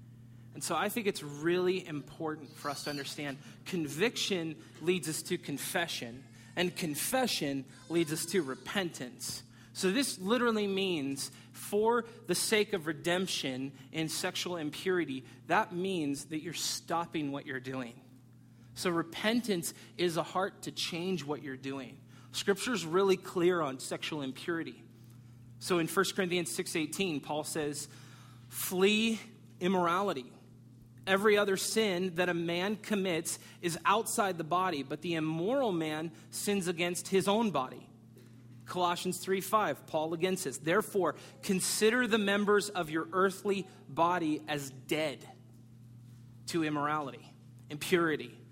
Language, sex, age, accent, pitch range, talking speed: English, male, 30-49, American, 130-180 Hz, 130 wpm